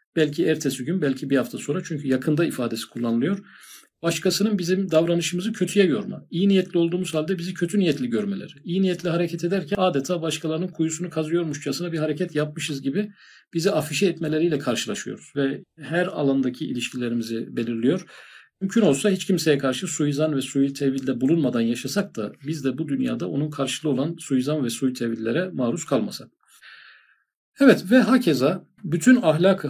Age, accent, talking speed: 50-69, native, 150 wpm